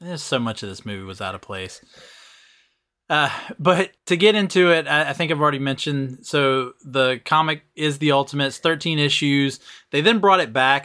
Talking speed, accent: 190 wpm, American